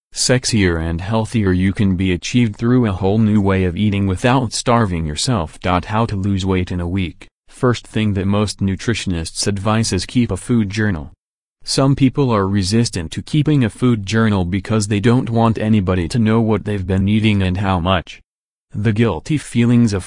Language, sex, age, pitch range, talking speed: English, male, 30-49, 95-115 Hz, 185 wpm